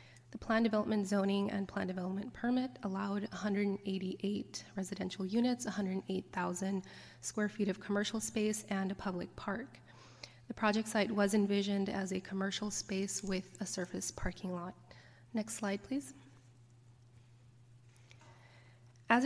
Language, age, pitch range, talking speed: English, 20-39, 185-210 Hz, 135 wpm